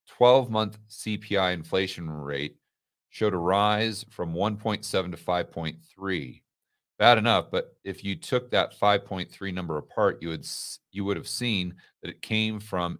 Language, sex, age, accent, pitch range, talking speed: English, male, 40-59, American, 85-110 Hz, 150 wpm